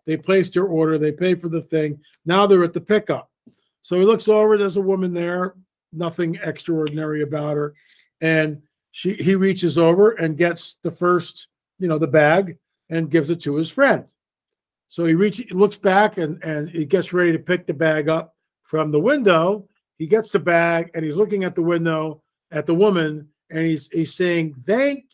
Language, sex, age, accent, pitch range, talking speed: English, male, 50-69, American, 155-195 Hz, 195 wpm